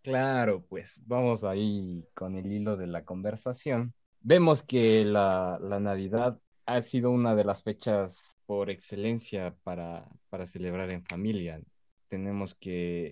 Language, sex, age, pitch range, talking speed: Spanish, male, 20-39, 100-125 Hz, 135 wpm